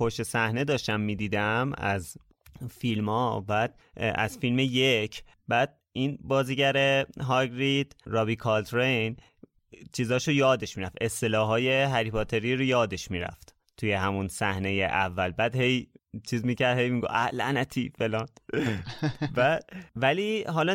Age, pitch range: 30-49, 105-135 Hz